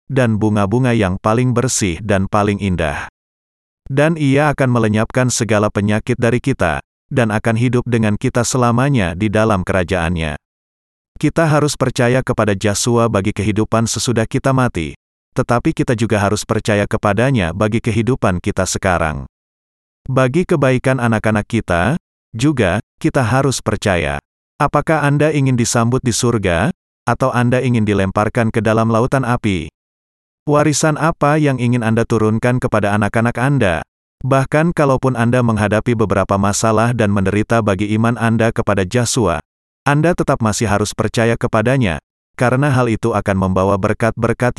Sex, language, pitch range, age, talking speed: male, Indonesian, 100-125 Hz, 30-49, 135 wpm